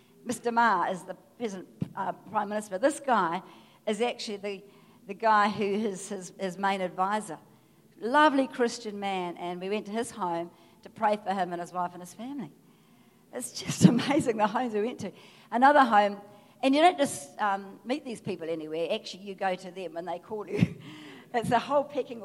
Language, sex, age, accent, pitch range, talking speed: English, female, 50-69, Australian, 190-245 Hz, 195 wpm